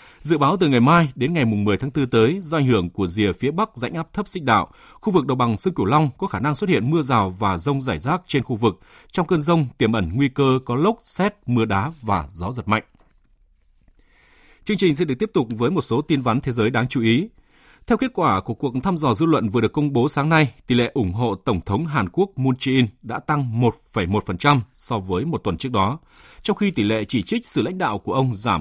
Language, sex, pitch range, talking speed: Vietnamese, male, 105-150 Hz, 255 wpm